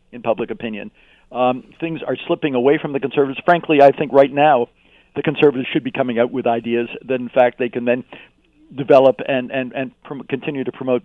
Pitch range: 125-150 Hz